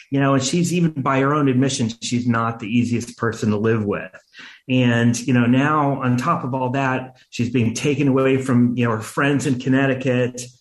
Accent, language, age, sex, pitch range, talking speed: American, English, 30-49, male, 120-150 Hz, 210 wpm